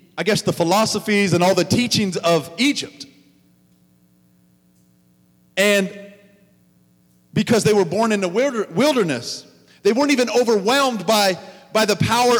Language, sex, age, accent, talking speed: English, male, 40-59, American, 125 wpm